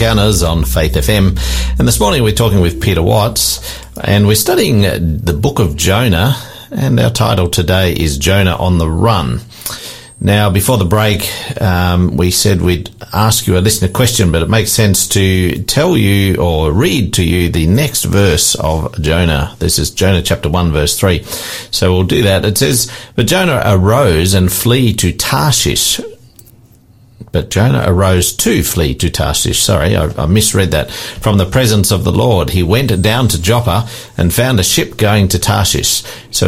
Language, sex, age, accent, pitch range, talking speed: English, male, 50-69, Australian, 90-110 Hz, 175 wpm